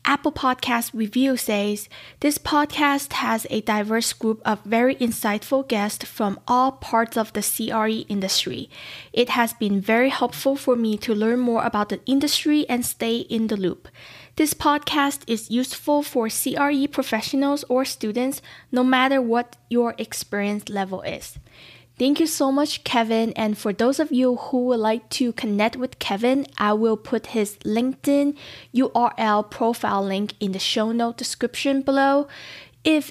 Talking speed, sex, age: 160 wpm, female, 20-39